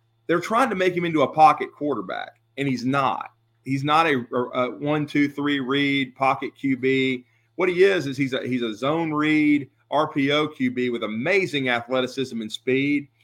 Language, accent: English, American